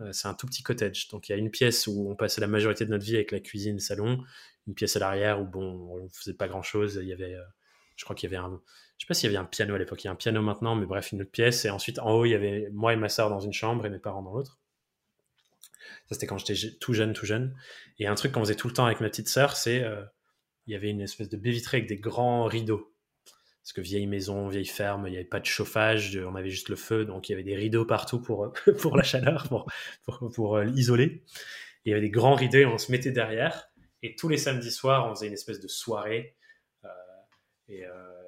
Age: 20-39